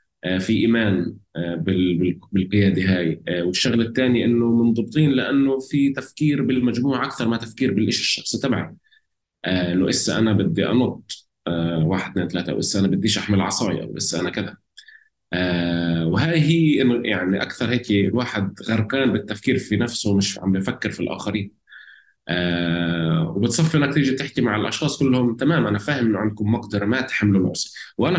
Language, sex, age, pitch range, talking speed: Arabic, male, 20-39, 95-120 Hz, 145 wpm